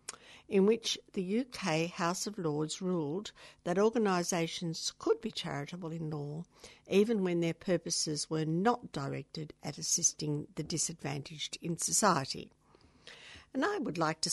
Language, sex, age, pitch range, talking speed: English, female, 60-79, 150-190 Hz, 140 wpm